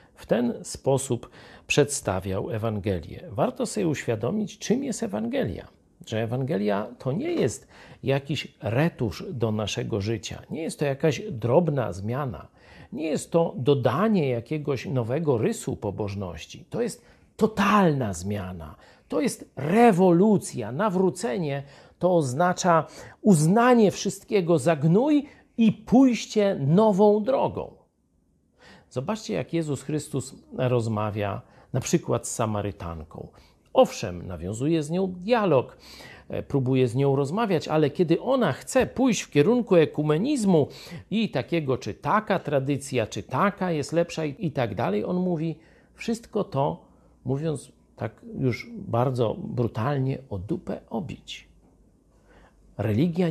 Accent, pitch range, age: native, 120-200 Hz, 50-69